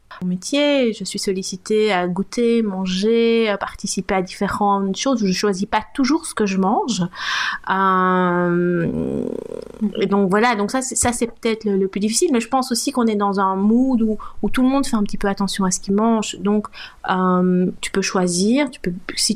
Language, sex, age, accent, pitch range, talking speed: French, female, 30-49, French, 185-230 Hz, 205 wpm